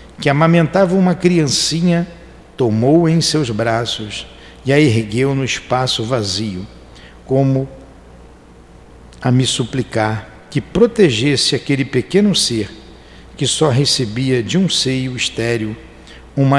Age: 60-79